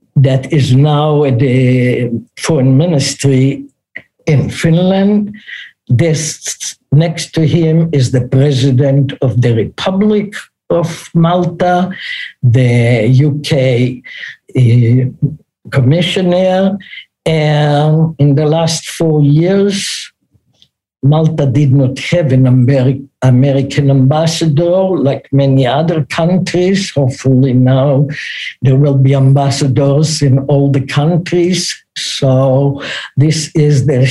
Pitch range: 130-165 Hz